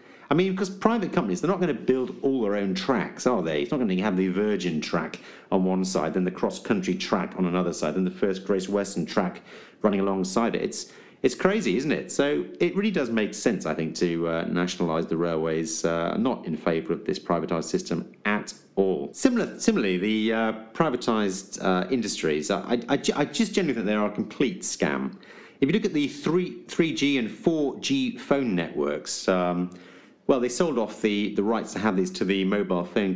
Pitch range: 90-120 Hz